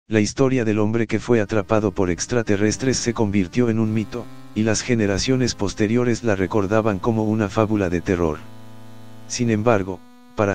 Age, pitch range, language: 50-69, 95-115 Hz, Spanish